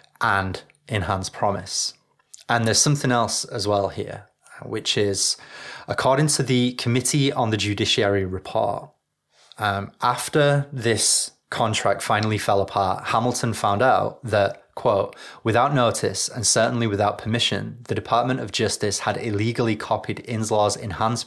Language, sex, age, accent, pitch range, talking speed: English, male, 20-39, British, 100-125 Hz, 135 wpm